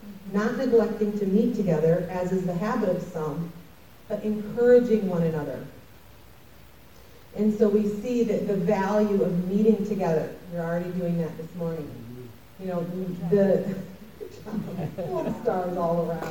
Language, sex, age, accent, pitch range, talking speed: English, female, 30-49, American, 175-215 Hz, 140 wpm